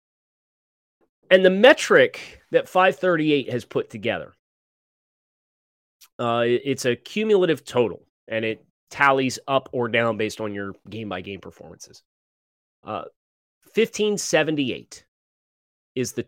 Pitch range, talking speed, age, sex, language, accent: 110-170 Hz, 105 wpm, 30-49, male, English, American